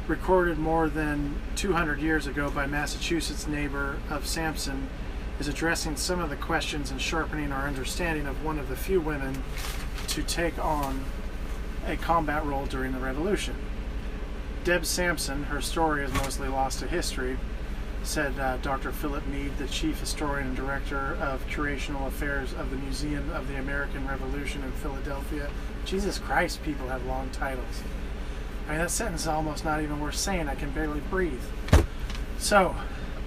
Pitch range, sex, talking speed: 140-160 Hz, male, 155 wpm